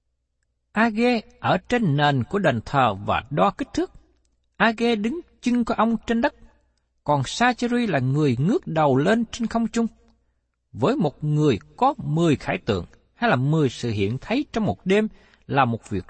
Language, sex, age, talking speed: Vietnamese, male, 60-79, 175 wpm